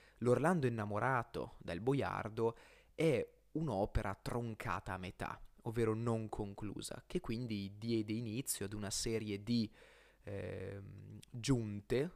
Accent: native